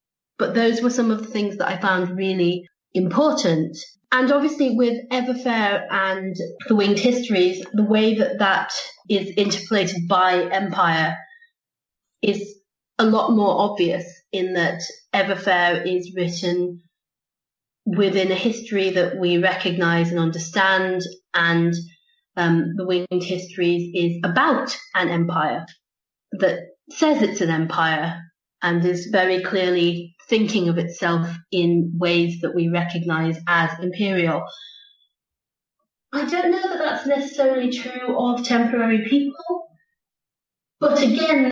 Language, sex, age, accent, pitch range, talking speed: English, female, 30-49, British, 175-245 Hz, 125 wpm